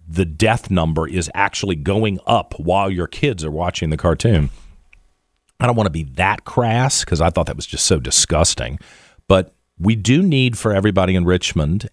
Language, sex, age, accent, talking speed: English, male, 40-59, American, 185 wpm